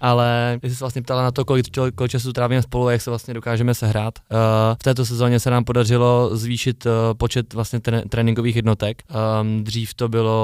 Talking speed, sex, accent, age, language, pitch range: 185 wpm, male, native, 20-39, Czech, 110-115 Hz